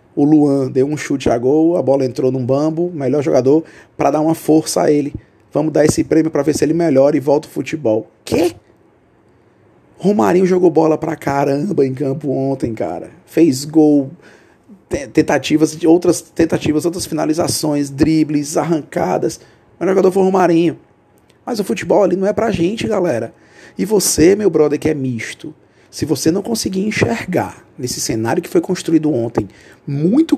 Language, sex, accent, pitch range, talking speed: Portuguese, male, Brazilian, 125-170 Hz, 170 wpm